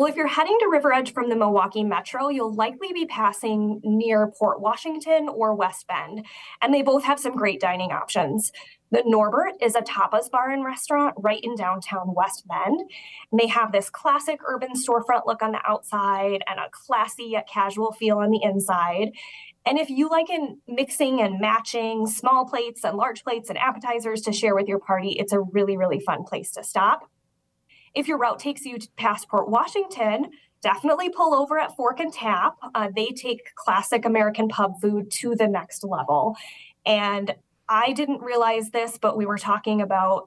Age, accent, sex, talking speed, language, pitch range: 20-39, American, female, 185 wpm, English, 205-260 Hz